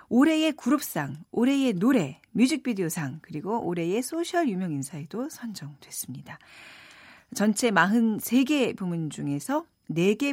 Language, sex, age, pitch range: Korean, female, 40-59, 160-250 Hz